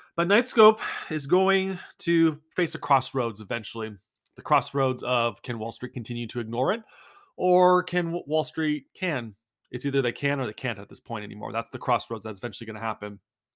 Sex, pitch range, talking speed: male, 120-150 Hz, 190 wpm